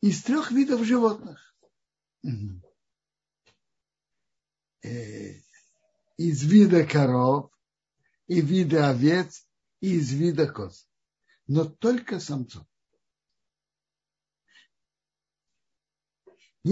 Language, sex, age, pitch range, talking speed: Russian, male, 60-79, 140-200 Hz, 60 wpm